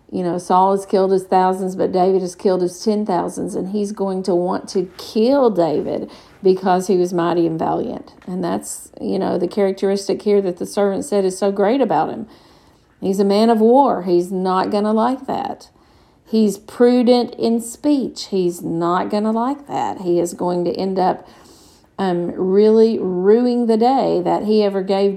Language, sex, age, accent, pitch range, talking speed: English, female, 50-69, American, 180-210 Hz, 190 wpm